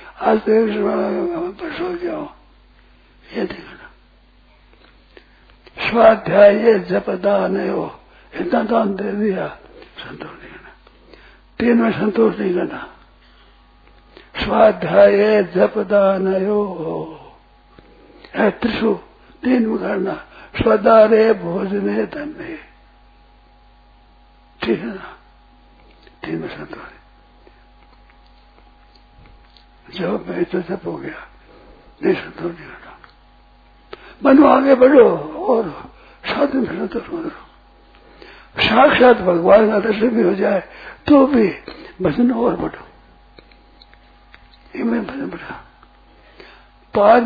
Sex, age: male, 60-79